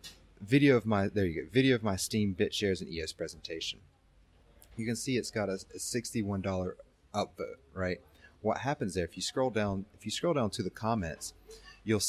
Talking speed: 205 wpm